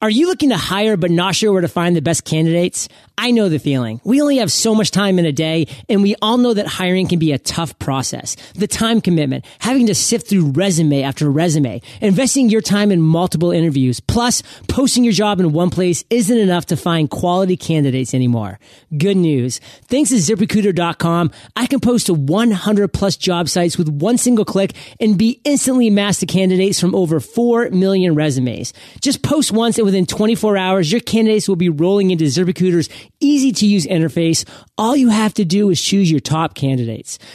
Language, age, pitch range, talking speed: English, 30-49, 160-220 Hz, 200 wpm